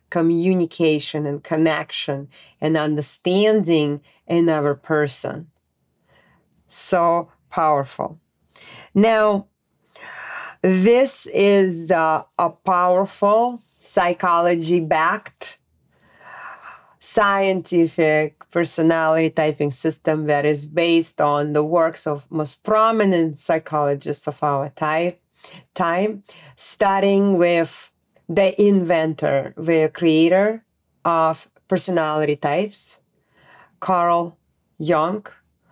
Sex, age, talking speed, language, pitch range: female, 40-59, 75 wpm, English, 155-185 Hz